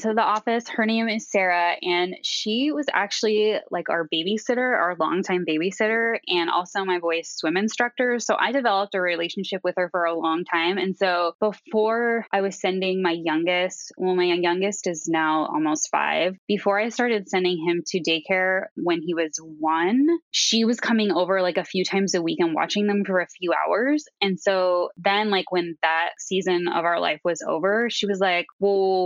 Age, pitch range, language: 10-29, 175-220 Hz, English